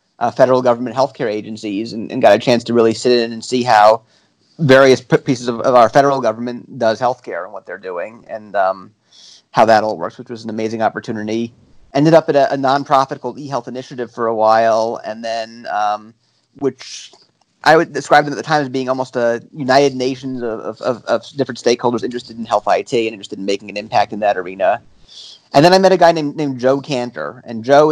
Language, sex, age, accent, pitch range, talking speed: English, male, 30-49, American, 115-140 Hz, 220 wpm